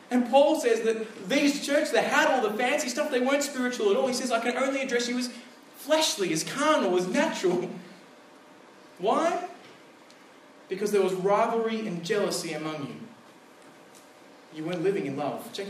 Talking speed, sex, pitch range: 170 wpm, male, 175-240 Hz